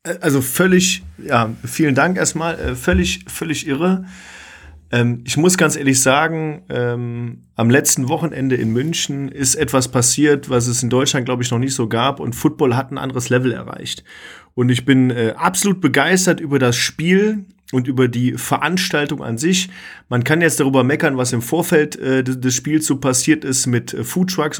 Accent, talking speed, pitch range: German, 170 wpm, 125-160 Hz